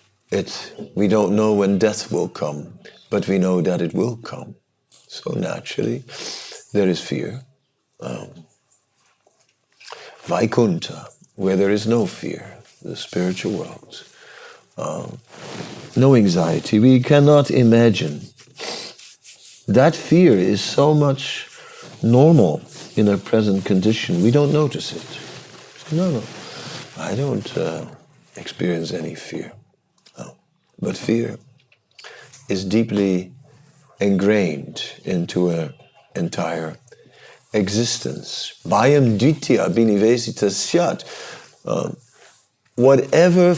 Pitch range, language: 100-140 Hz, English